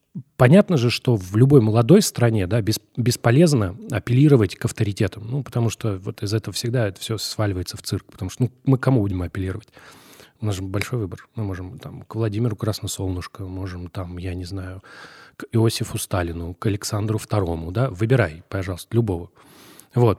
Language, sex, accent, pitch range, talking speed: Russian, male, native, 100-130 Hz, 180 wpm